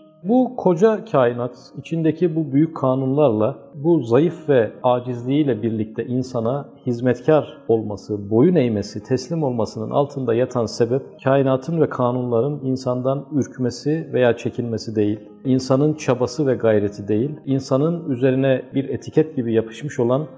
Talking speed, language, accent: 125 wpm, Turkish, native